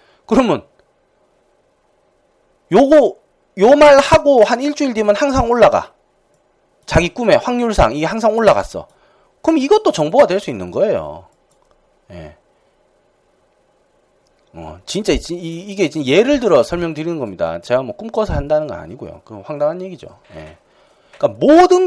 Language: English